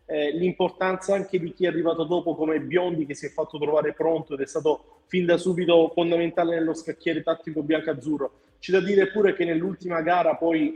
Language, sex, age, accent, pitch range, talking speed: Italian, male, 30-49, native, 150-170 Hz, 195 wpm